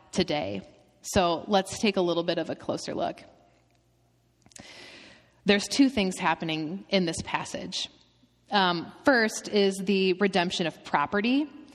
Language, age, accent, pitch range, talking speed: English, 30-49, American, 180-230 Hz, 130 wpm